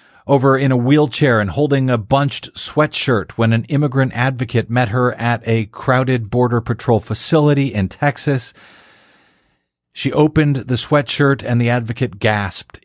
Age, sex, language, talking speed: 40-59, male, English, 145 wpm